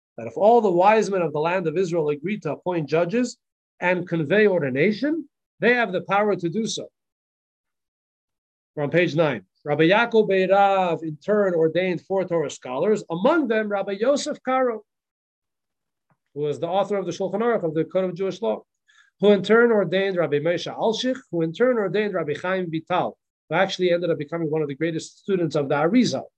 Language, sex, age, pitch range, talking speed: English, male, 40-59, 160-215 Hz, 190 wpm